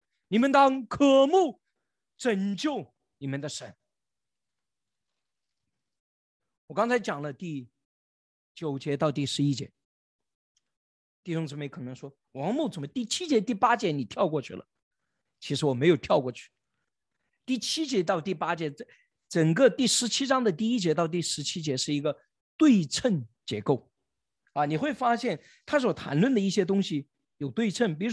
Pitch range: 150-245 Hz